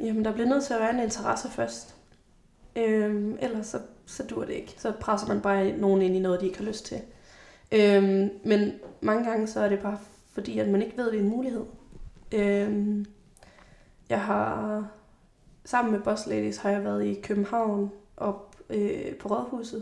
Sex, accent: female, native